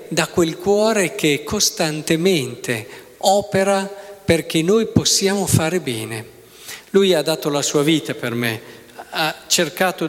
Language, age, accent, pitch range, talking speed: Italian, 50-69, native, 150-200 Hz, 125 wpm